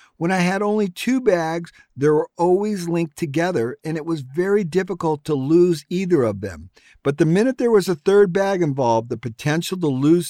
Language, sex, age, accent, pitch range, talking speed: English, male, 50-69, American, 130-180 Hz, 200 wpm